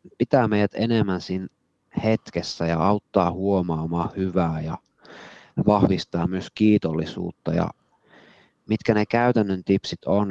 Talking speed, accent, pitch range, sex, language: 110 wpm, native, 85-105 Hz, male, Finnish